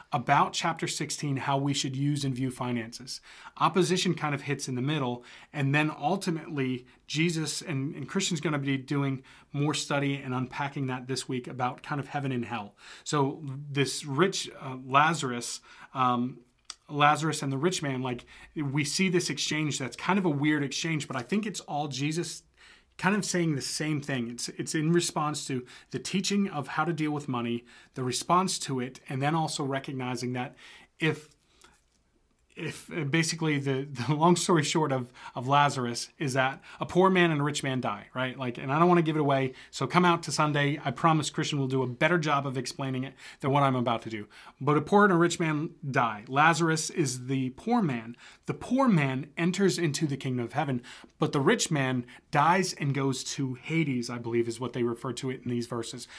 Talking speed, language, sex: 205 wpm, English, male